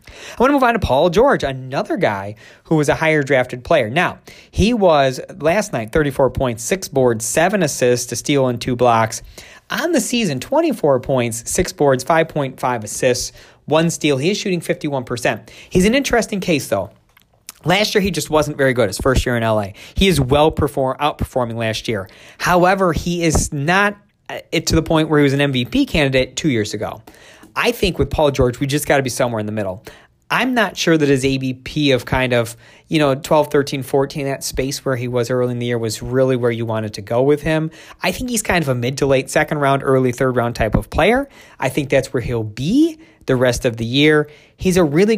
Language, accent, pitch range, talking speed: English, American, 125-165 Hz, 215 wpm